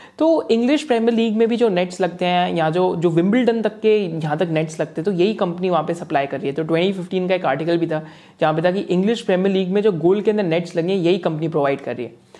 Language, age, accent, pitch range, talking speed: Hindi, 20-39, native, 165-220 Hz, 275 wpm